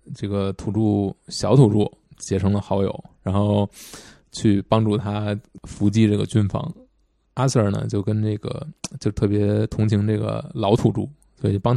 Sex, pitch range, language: male, 100-110 Hz, Chinese